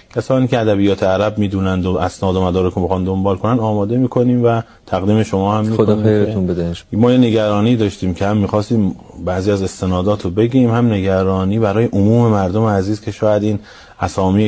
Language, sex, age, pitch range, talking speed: Persian, male, 30-49, 90-115 Hz, 180 wpm